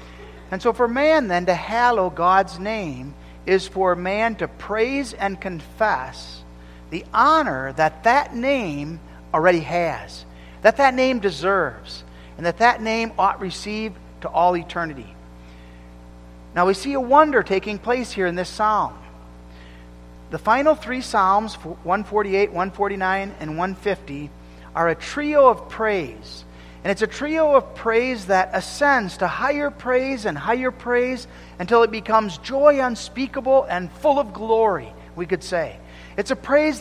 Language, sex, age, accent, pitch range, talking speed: English, male, 50-69, American, 160-240 Hz, 145 wpm